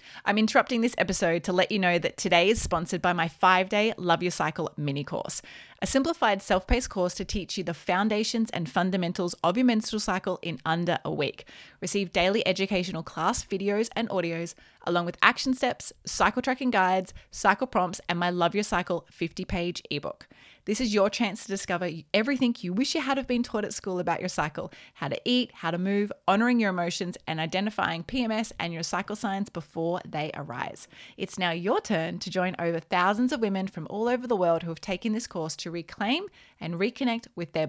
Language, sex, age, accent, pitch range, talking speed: English, female, 20-39, Australian, 170-220 Hz, 205 wpm